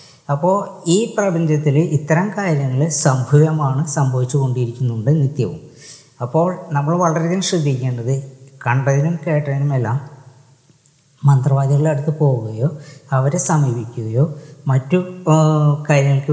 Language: Malayalam